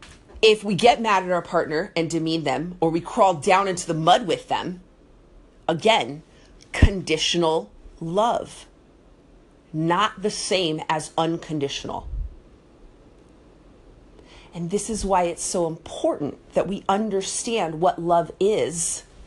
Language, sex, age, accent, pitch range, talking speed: English, female, 30-49, American, 165-230 Hz, 125 wpm